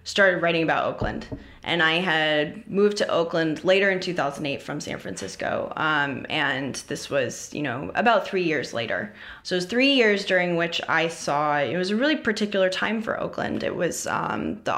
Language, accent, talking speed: English, American, 190 wpm